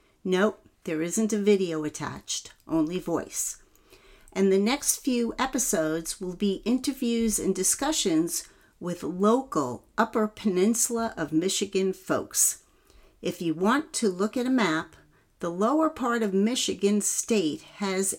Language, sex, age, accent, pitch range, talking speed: English, female, 50-69, American, 165-220 Hz, 130 wpm